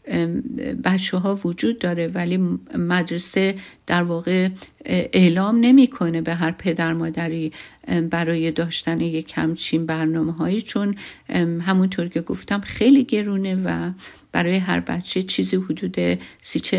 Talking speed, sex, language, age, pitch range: 120 wpm, female, Persian, 50-69, 170-195 Hz